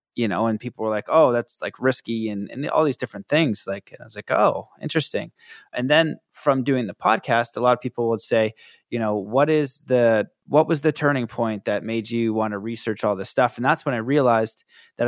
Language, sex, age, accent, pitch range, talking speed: English, male, 20-39, American, 105-130 Hz, 235 wpm